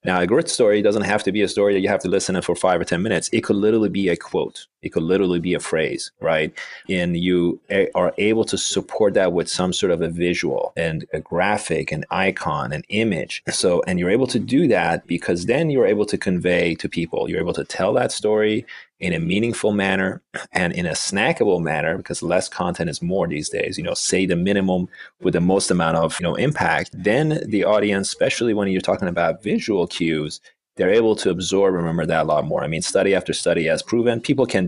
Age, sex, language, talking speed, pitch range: 30-49, male, English, 230 wpm, 90-105 Hz